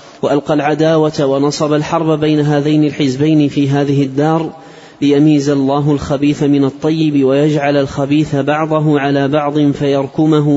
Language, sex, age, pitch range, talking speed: Arabic, male, 30-49, 140-150 Hz, 120 wpm